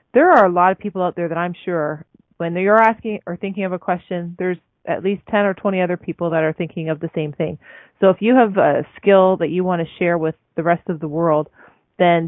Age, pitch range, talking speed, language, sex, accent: 30-49, 165-195 Hz, 255 wpm, English, female, American